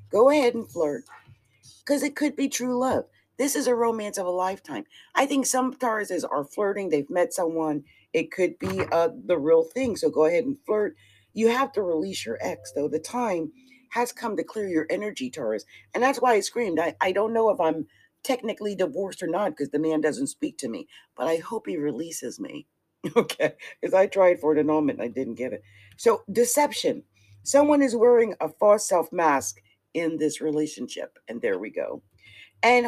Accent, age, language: American, 50-69, English